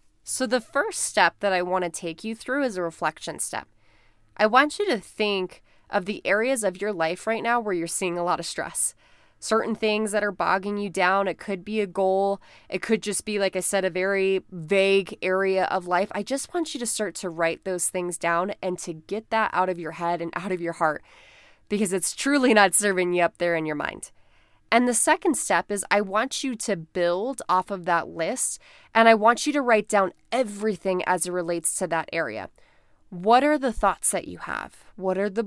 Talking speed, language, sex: 225 wpm, English, female